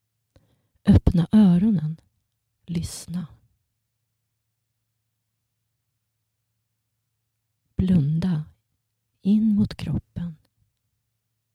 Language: Swedish